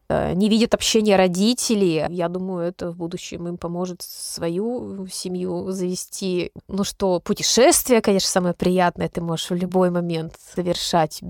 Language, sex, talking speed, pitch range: Russian, female, 140 wpm, 175-215 Hz